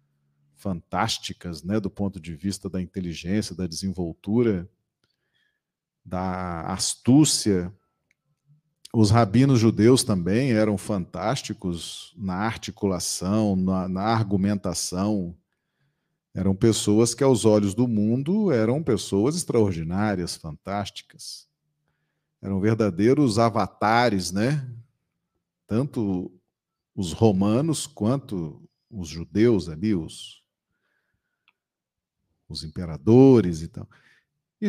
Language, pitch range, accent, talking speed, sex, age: Portuguese, 95-145 Hz, Brazilian, 90 wpm, male, 40-59